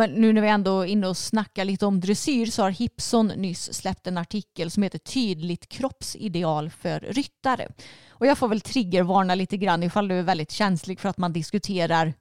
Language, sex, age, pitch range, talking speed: Swedish, female, 30-49, 180-245 Hz, 200 wpm